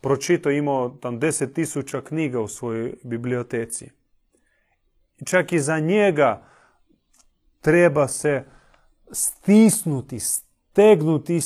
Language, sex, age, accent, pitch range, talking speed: Croatian, male, 30-49, Serbian, 140-180 Hz, 90 wpm